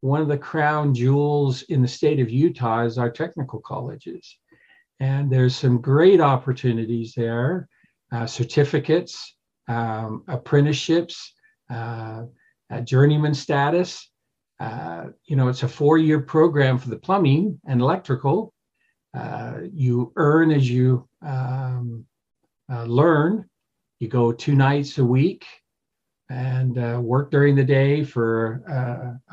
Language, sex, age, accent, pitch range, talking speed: English, male, 50-69, American, 120-145 Hz, 125 wpm